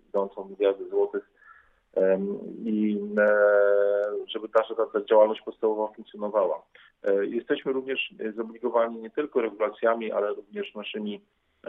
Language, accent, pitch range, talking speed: Polish, native, 100-125 Hz, 105 wpm